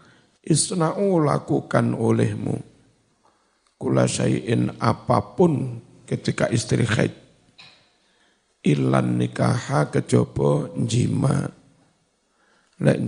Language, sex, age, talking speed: Indonesian, male, 50-69, 65 wpm